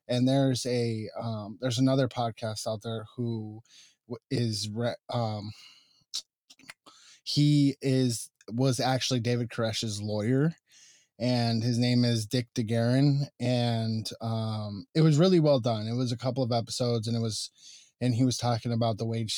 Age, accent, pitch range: 20-39, American, 115-130 Hz